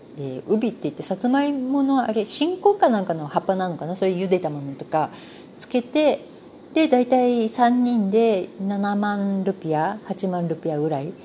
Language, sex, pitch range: Japanese, female, 155-210 Hz